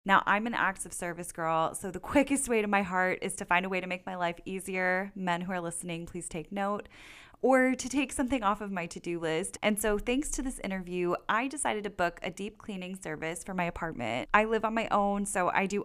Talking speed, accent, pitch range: 245 wpm, American, 180-225 Hz